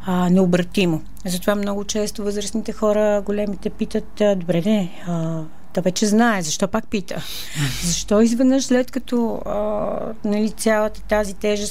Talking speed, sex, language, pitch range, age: 135 wpm, female, Bulgarian, 180-220 Hz, 40-59